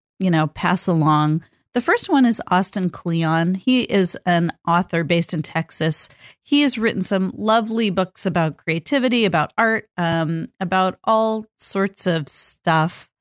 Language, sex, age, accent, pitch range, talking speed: English, female, 40-59, American, 160-200 Hz, 150 wpm